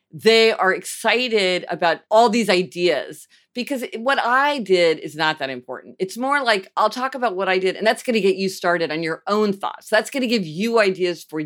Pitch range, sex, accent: 180-240 Hz, female, American